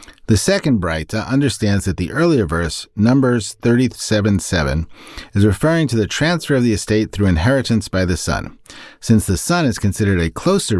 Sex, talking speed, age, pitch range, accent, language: male, 170 wpm, 40-59, 90-125 Hz, American, English